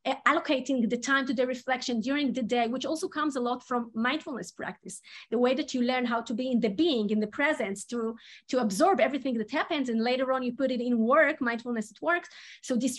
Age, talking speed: 30-49, 230 wpm